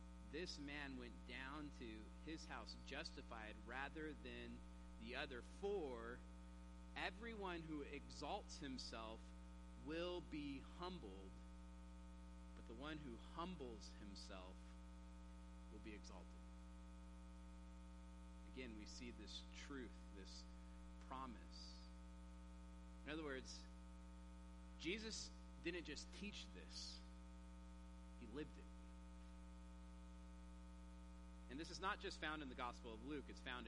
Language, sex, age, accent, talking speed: English, male, 40-59, American, 105 wpm